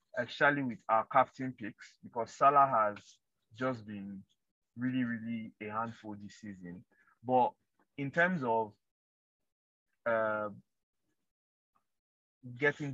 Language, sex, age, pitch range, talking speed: English, male, 20-39, 105-130 Hz, 100 wpm